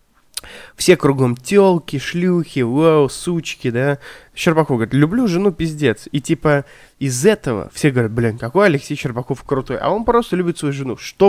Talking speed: 160 wpm